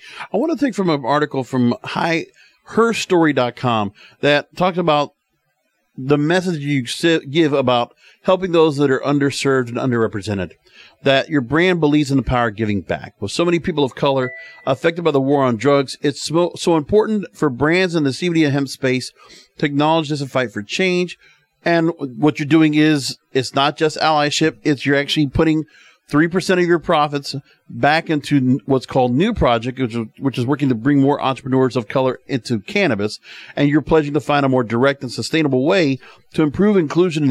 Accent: American